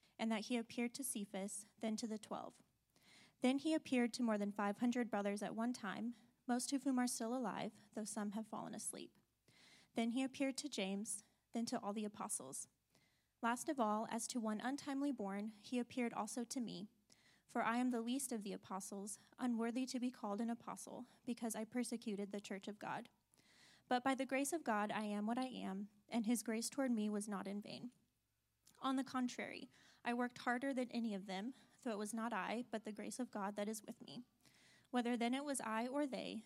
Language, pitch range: English, 210-250 Hz